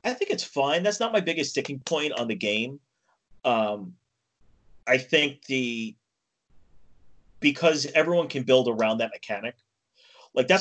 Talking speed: 145 wpm